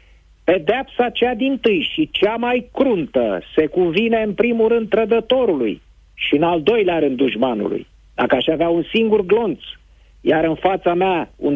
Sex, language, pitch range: male, Romanian, 130-180 Hz